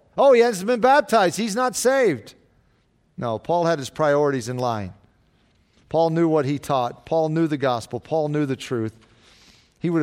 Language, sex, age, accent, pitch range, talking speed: English, male, 40-59, American, 125-180 Hz, 180 wpm